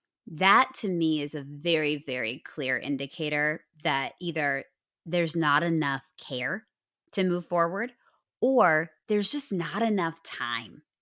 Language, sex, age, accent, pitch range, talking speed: English, female, 30-49, American, 150-190 Hz, 130 wpm